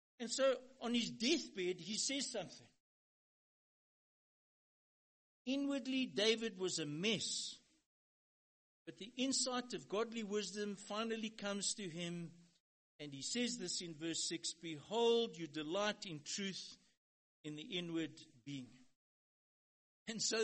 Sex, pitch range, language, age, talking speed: male, 165-235 Hz, English, 60-79, 120 wpm